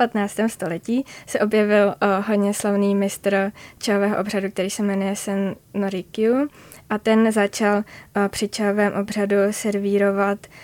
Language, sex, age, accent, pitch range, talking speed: Czech, female, 20-39, native, 195-215 Hz, 135 wpm